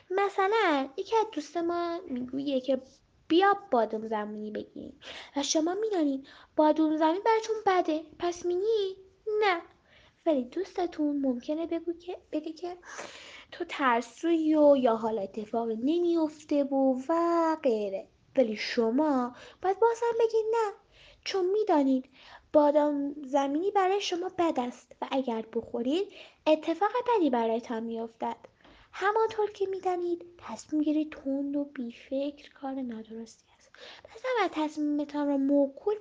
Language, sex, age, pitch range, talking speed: Persian, female, 10-29, 245-355 Hz, 130 wpm